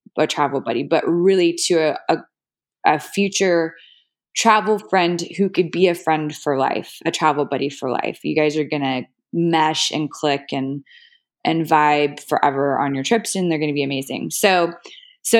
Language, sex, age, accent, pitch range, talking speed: English, female, 20-39, American, 165-215 Hz, 185 wpm